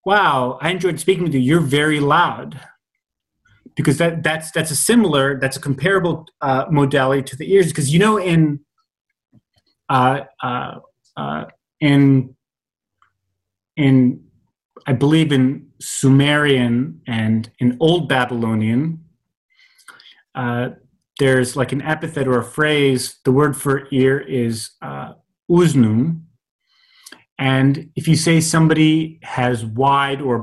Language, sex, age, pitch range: English, male, 30-49, 125-160 Hz